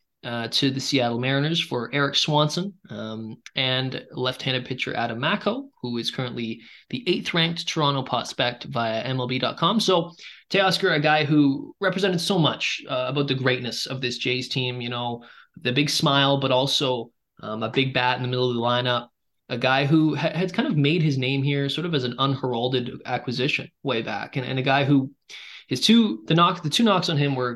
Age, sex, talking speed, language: 20-39, male, 200 wpm, English